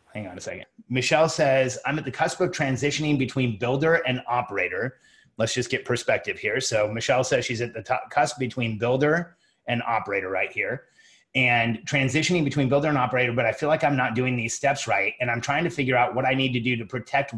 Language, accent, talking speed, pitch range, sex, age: English, American, 220 wpm, 120-145 Hz, male, 30-49